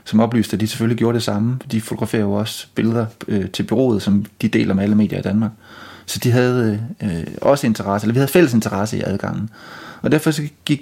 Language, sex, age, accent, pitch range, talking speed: Danish, male, 30-49, native, 110-130 Hz, 215 wpm